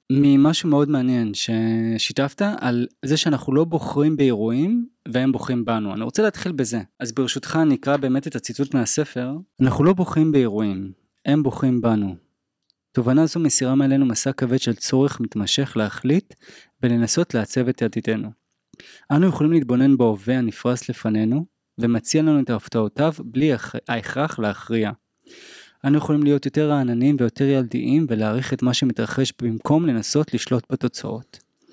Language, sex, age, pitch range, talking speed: Hebrew, male, 20-39, 115-145 Hz, 140 wpm